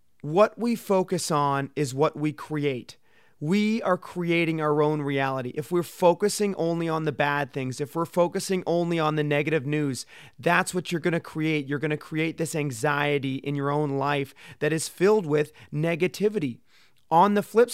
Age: 30-49